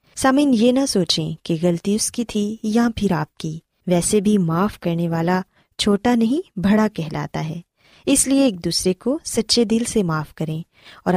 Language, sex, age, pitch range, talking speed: Urdu, female, 20-39, 175-240 Hz, 165 wpm